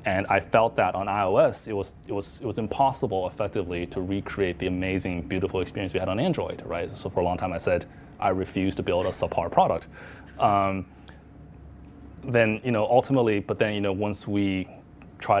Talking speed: 200 wpm